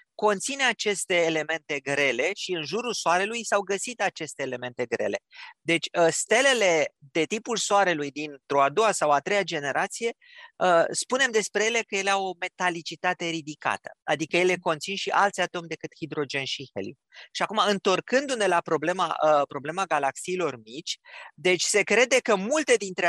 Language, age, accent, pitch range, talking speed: Romanian, 30-49, native, 155-210 Hz, 155 wpm